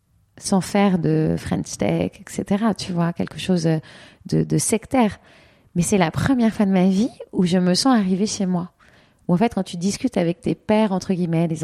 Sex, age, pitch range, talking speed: female, 30-49, 170-210 Hz, 205 wpm